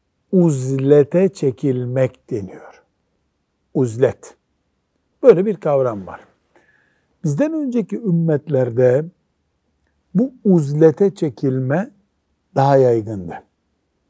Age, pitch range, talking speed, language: 60-79, 115-165 Hz, 70 wpm, Turkish